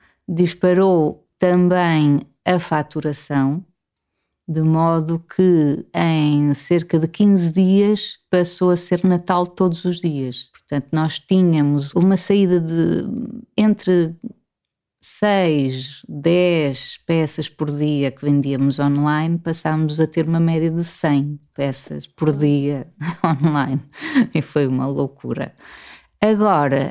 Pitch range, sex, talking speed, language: 150-185 Hz, female, 110 wpm, Portuguese